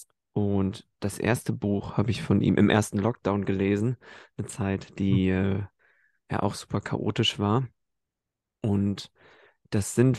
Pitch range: 95-115 Hz